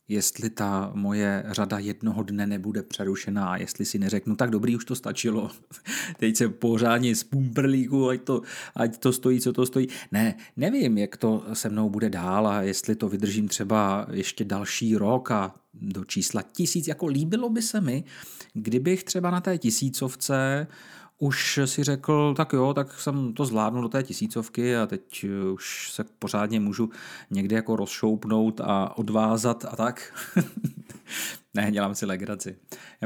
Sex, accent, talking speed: male, native, 165 wpm